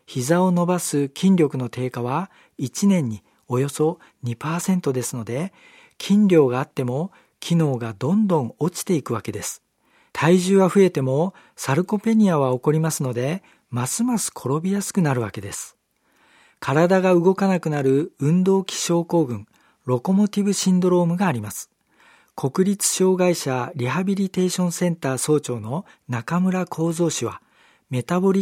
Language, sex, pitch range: Japanese, male, 135-185 Hz